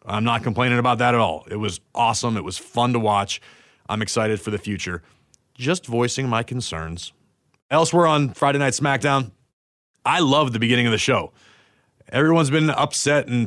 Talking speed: 180 wpm